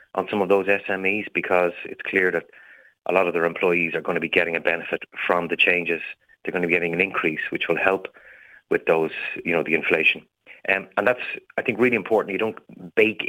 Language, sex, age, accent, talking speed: English, male, 30-49, Irish, 225 wpm